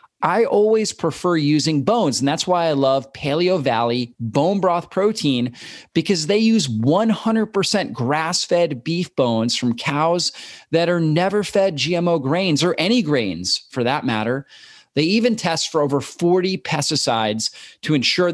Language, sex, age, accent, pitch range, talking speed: English, male, 30-49, American, 135-175 Hz, 145 wpm